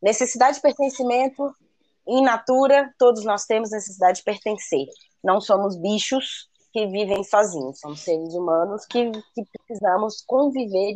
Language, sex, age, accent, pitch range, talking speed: Portuguese, female, 20-39, Brazilian, 190-250 Hz, 130 wpm